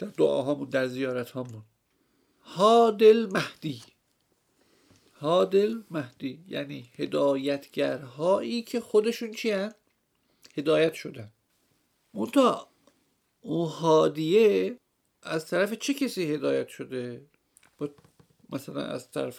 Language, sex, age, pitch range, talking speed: Persian, male, 50-69, 140-215 Hz, 95 wpm